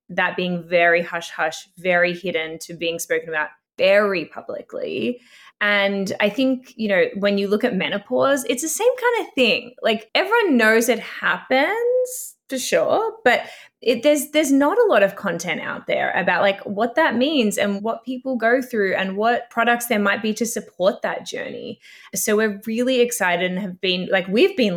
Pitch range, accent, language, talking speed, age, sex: 180-255 Hz, Australian, English, 185 wpm, 20-39, female